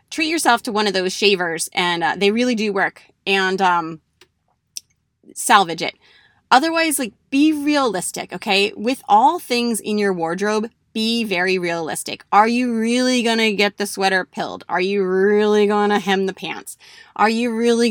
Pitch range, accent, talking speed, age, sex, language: 185-250 Hz, American, 165 wpm, 20-39, female, English